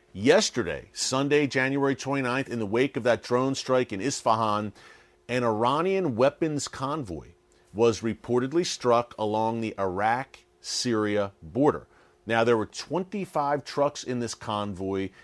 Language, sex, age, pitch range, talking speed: English, male, 40-59, 110-140 Hz, 125 wpm